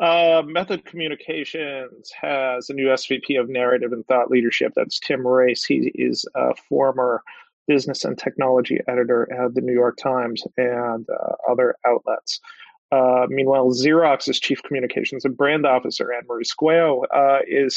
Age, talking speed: 30-49, 145 wpm